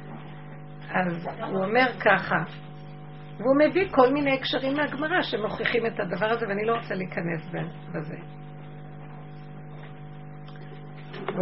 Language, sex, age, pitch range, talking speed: Hebrew, female, 50-69, 150-235 Hz, 105 wpm